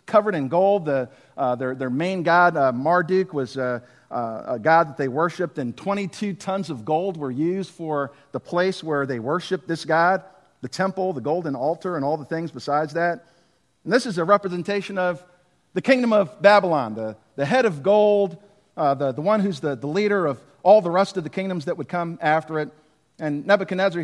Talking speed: 205 wpm